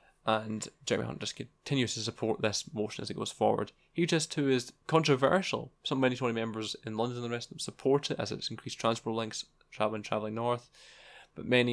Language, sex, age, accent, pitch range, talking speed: English, male, 10-29, British, 110-130 Hz, 215 wpm